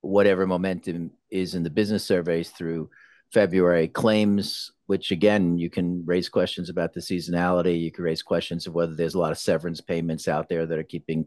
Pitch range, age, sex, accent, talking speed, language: 85-100 Hz, 50-69, male, American, 190 wpm, English